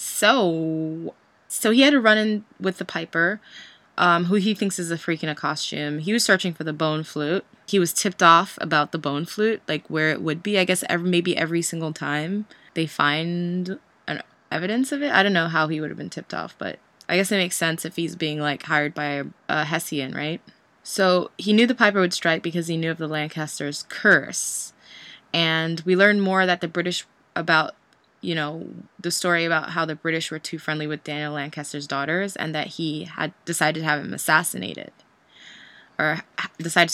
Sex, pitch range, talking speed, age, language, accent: female, 155-185 Hz, 205 wpm, 20-39, English, American